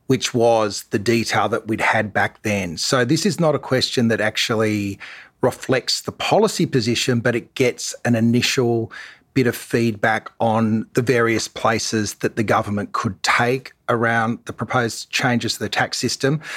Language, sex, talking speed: English, male, 165 wpm